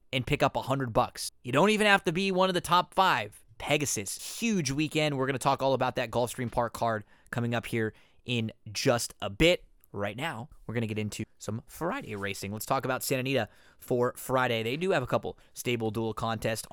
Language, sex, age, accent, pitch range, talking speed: English, male, 20-39, American, 120-145 Hz, 220 wpm